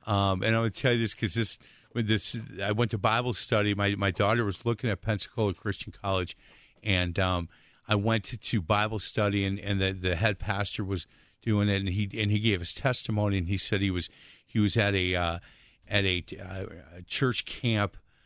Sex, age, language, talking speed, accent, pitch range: male, 50-69, English, 210 wpm, American, 95-115 Hz